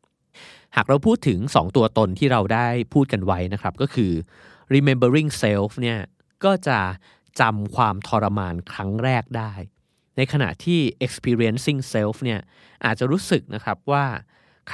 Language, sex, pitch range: Thai, male, 100-130 Hz